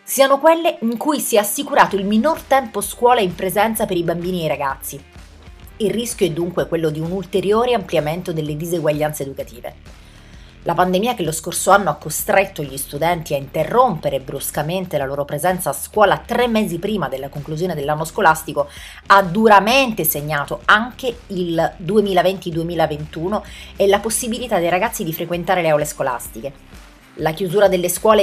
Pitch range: 155-200 Hz